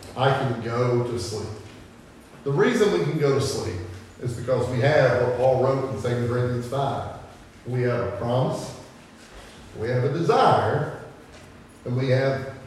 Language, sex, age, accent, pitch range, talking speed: English, male, 40-59, American, 115-145 Hz, 160 wpm